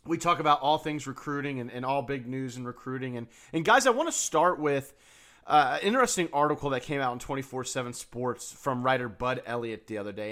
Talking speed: 215 wpm